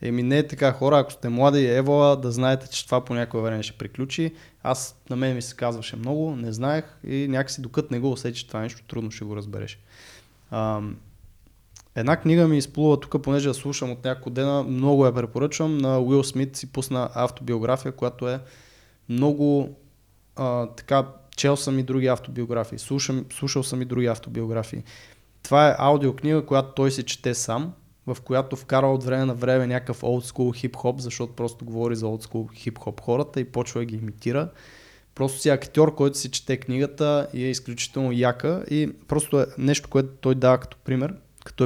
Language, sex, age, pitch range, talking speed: Bulgarian, male, 20-39, 120-140 Hz, 185 wpm